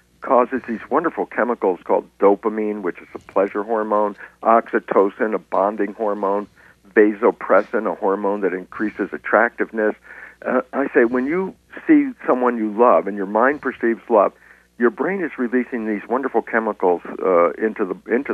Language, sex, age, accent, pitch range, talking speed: English, male, 60-79, American, 105-155 Hz, 150 wpm